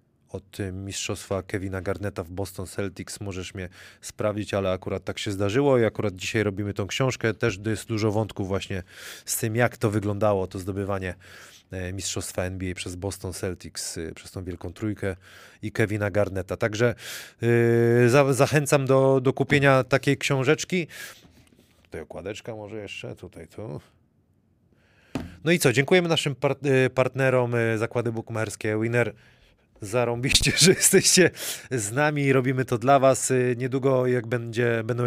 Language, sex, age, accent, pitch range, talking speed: Polish, male, 30-49, native, 95-125 Hz, 145 wpm